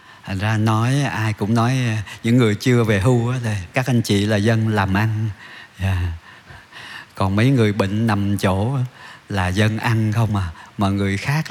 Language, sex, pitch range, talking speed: Vietnamese, male, 100-125 Hz, 165 wpm